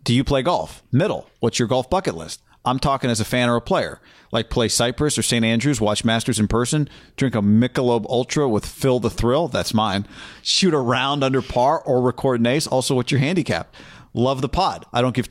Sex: male